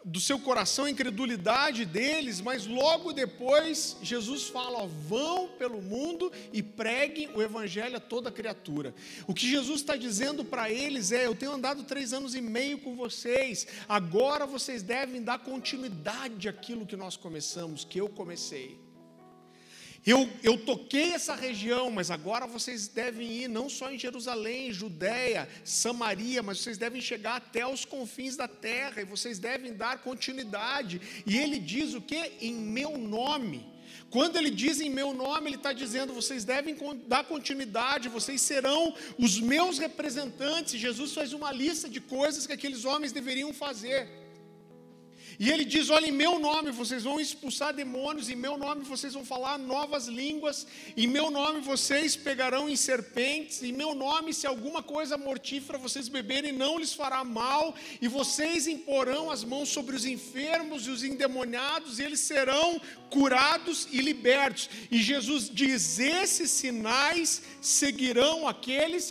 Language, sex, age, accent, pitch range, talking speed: Portuguese, male, 50-69, Brazilian, 235-290 Hz, 155 wpm